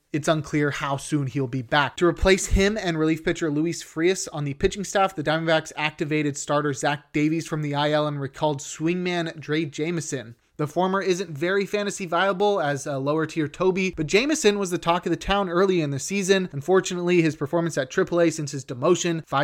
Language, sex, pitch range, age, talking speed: English, male, 145-175 Hz, 20-39, 200 wpm